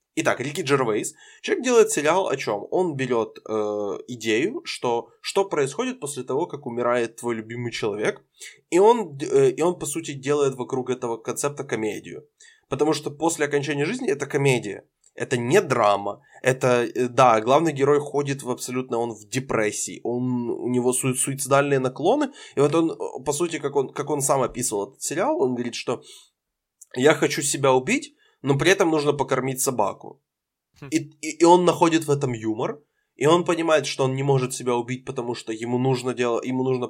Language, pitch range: Ukrainian, 120-145 Hz